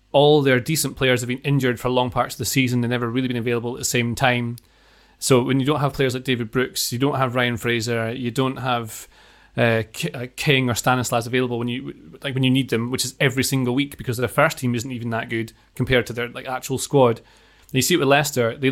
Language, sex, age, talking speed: English, male, 30-49, 245 wpm